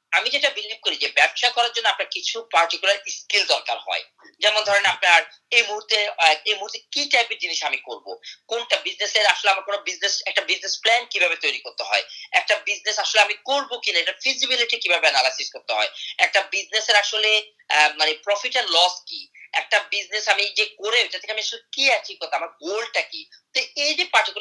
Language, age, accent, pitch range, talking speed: Bengali, 30-49, native, 190-250 Hz, 50 wpm